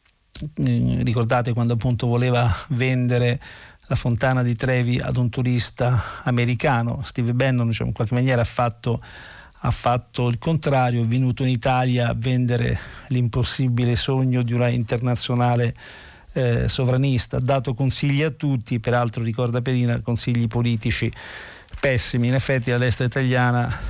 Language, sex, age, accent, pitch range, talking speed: Italian, male, 50-69, native, 120-130 Hz, 130 wpm